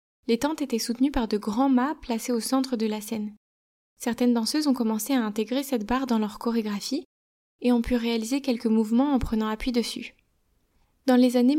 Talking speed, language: 195 wpm, French